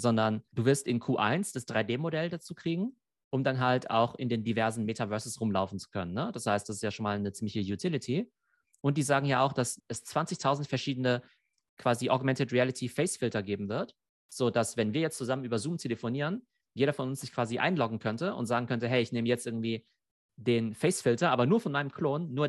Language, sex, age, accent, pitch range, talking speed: German, male, 30-49, German, 115-140 Hz, 210 wpm